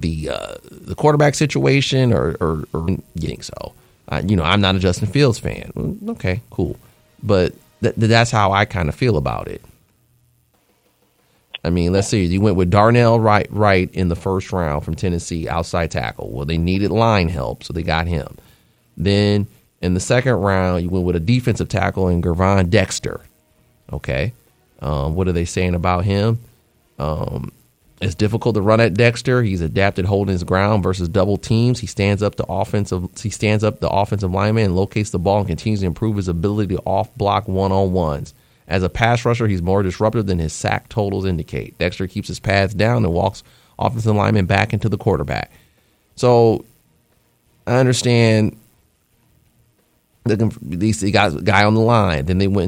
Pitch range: 90-110 Hz